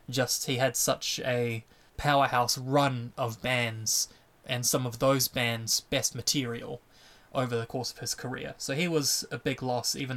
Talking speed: 170 wpm